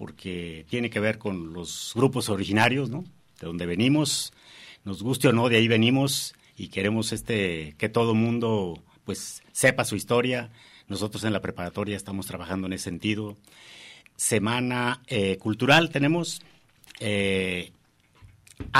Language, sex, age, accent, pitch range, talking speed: Spanish, male, 50-69, Mexican, 100-135 Hz, 140 wpm